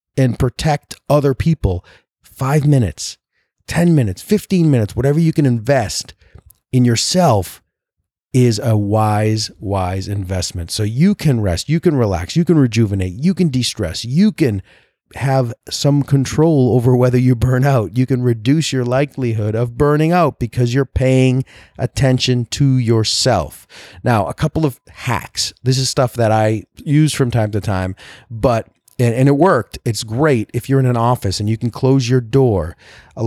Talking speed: 165 wpm